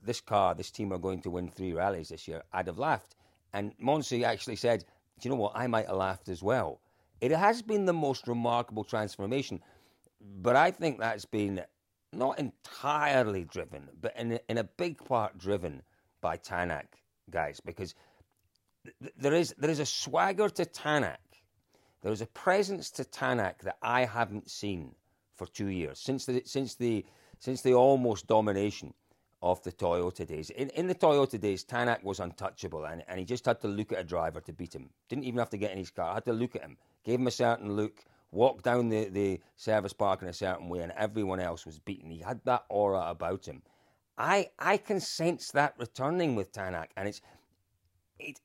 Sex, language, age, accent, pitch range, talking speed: male, English, 40-59, British, 95-135 Hz, 200 wpm